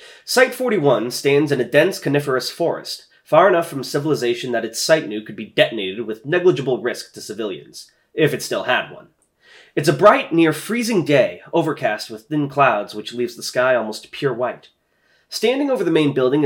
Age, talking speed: 30-49, 175 wpm